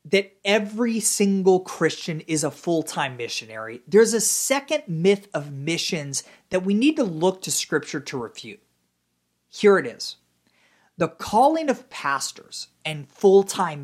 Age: 30-49